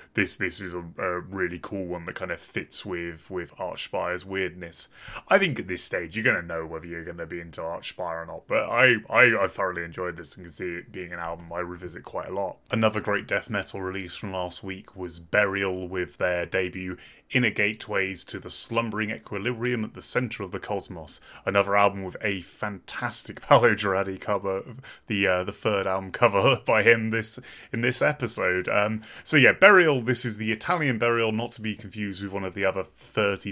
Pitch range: 90-105 Hz